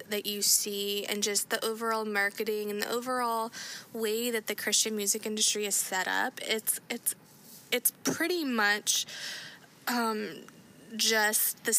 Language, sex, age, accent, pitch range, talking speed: English, female, 20-39, American, 195-225 Hz, 145 wpm